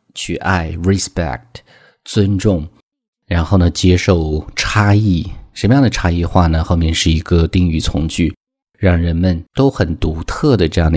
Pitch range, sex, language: 85-105 Hz, male, Chinese